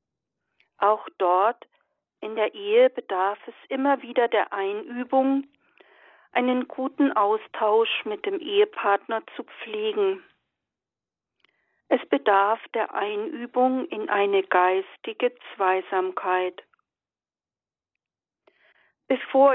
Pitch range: 210-270 Hz